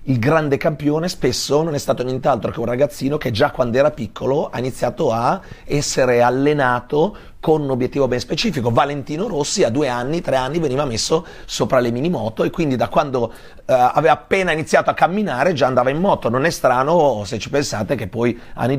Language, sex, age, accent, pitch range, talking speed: Italian, male, 30-49, native, 110-145 Hz, 195 wpm